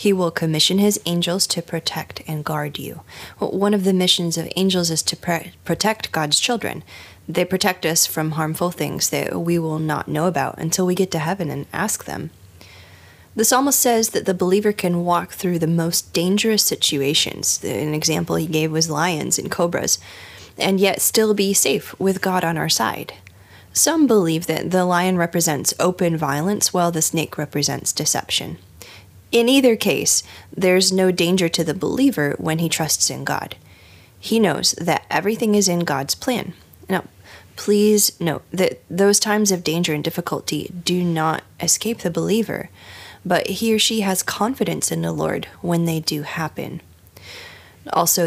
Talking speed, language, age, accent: 170 wpm, English, 10-29, American